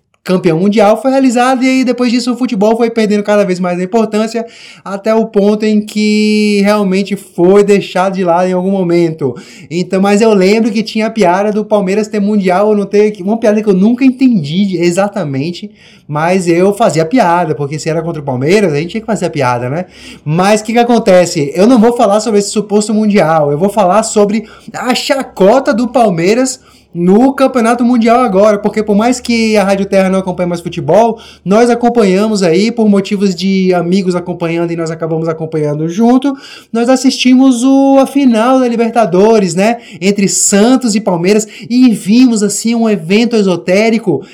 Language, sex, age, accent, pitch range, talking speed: Portuguese, male, 20-39, Brazilian, 180-225 Hz, 175 wpm